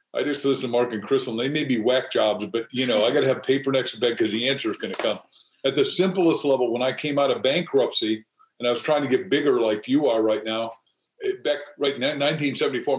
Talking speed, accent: 265 wpm, American